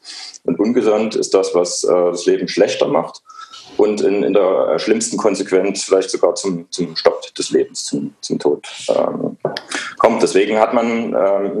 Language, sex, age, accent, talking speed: German, male, 30-49, German, 165 wpm